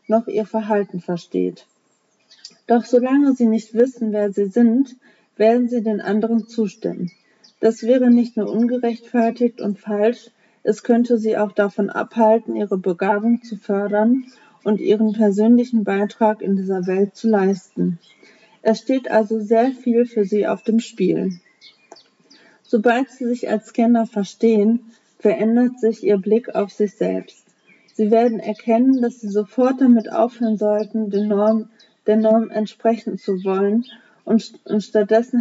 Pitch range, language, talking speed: 205-235 Hz, German, 140 wpm